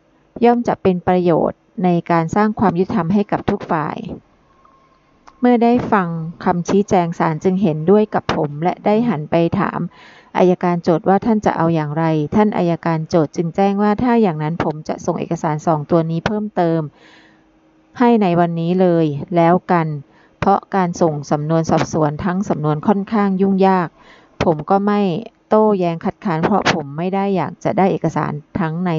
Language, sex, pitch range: Thai, female, 160-195 Hz